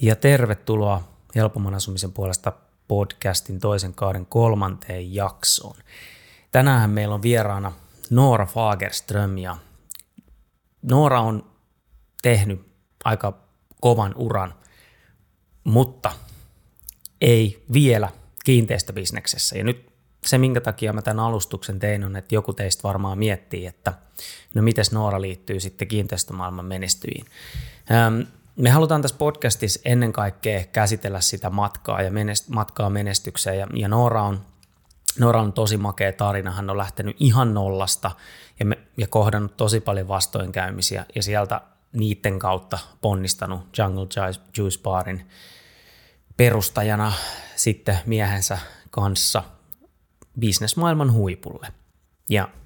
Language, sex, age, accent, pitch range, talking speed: Finnish, male, 30-49, native, 95-115 Hz, 115 wpm